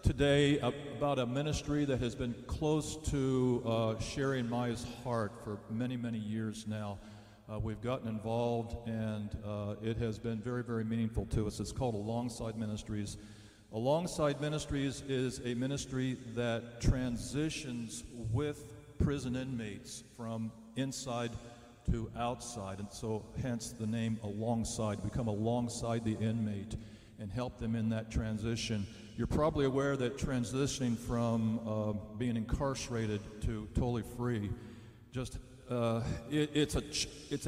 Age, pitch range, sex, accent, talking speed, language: 50-69, 110-125 Hz, male, American, 140 wpm, English